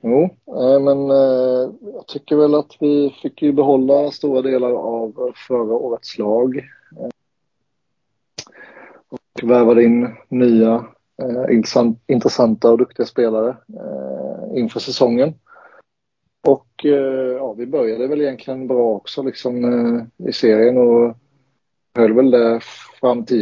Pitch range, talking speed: 115-130 Hz, 130 wpm